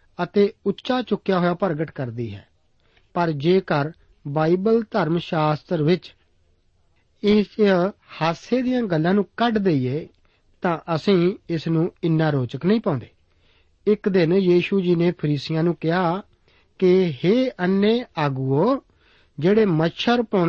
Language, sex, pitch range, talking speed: Punjabi, male, 145-190 Hz, 100 wpm